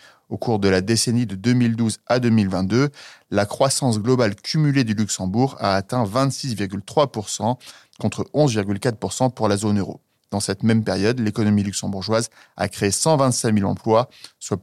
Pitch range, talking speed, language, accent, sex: 105-130 Hz, 150 wpm, French, French, male